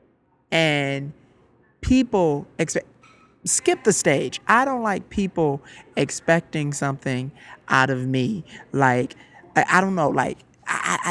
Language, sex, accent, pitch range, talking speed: English, male, American, 135-195 Hz, 120 wpm